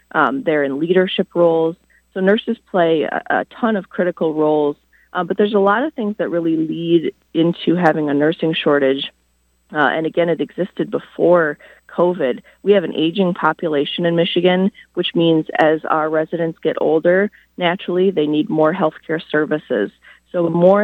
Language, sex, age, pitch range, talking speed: Arabic, female, 30-49, 155-180 Hz, 165 wpm